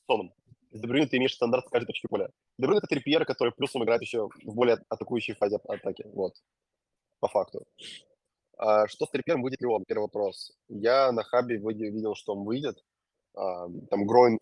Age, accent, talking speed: 20-39, native, 175 wpm